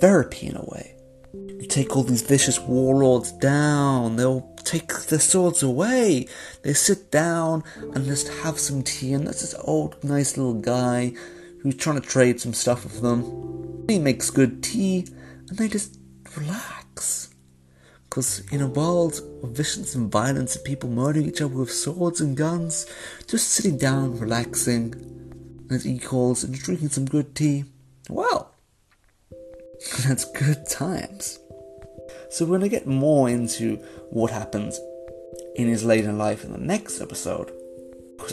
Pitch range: 115-165 Hz